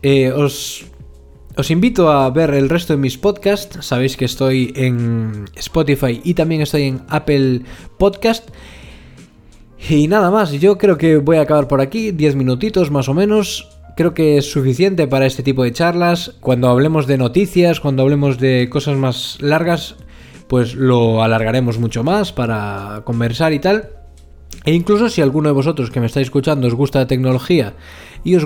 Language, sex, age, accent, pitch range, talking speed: Spanish, male, 20-39, Spanish, 120-155 Hz, 175 wpm